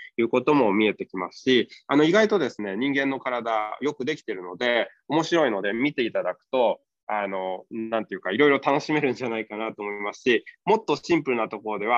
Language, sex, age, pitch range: Japanese, male, 20-39, 115-165 Hz